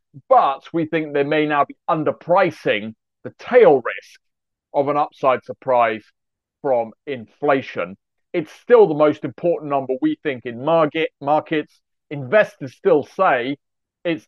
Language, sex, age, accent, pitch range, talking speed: English, male, 40-59, British, 135-175 Hz, 130 wpm